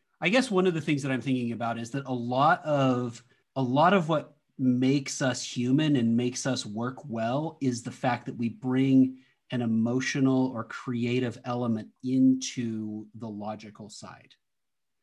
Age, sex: 30-49, male